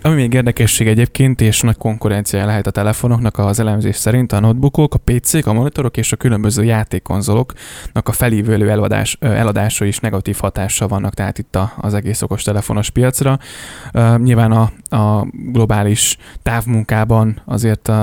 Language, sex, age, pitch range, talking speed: Hungarian, male, 10-29, 105-120 Hz, 140 wpm